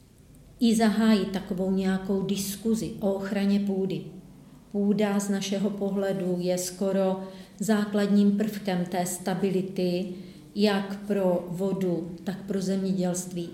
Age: 40-59